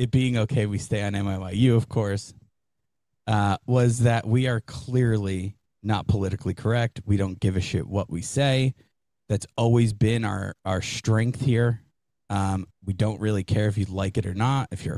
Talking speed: 185 wpm